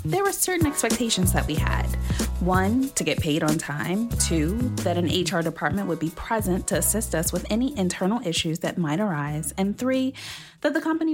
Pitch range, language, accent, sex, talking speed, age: 165-225 Hz, English, American, female, 195 wpm, 20-39